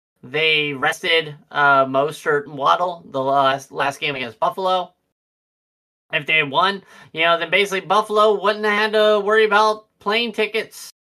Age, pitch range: 30-49, 160-205 Hz